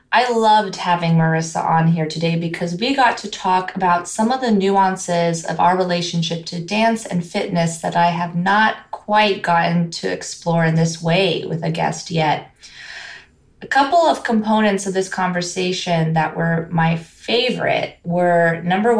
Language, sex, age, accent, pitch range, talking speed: English, female, 20-39, American, 170-205 Hz, 165 wpm